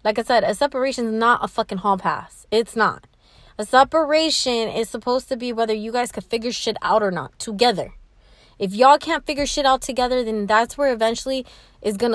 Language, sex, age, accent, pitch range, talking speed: English, female, 20-39, American, 215-280 Hz, 205 wpm